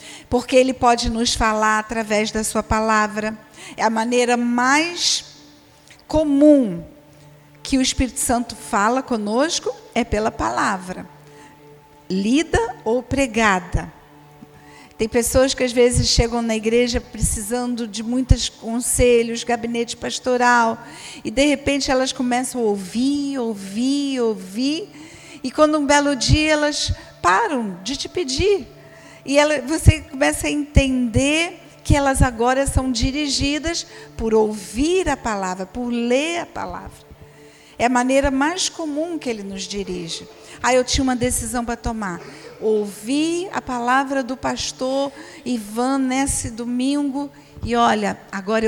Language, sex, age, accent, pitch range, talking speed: Portuguese, female, 50-69, Brazilian, 215-280 Hz, 130 wpm